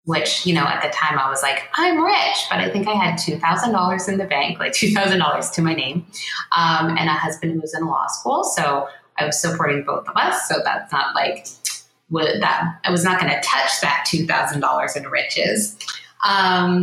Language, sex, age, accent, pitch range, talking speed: English, female, 20-39, American, 155-185 Hz, 205 wpm